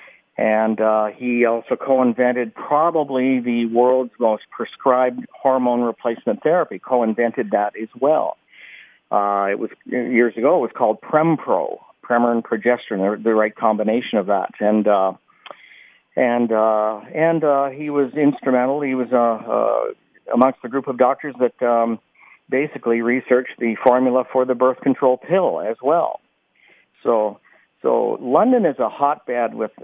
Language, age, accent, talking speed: English, 50-69, American, 150 wpm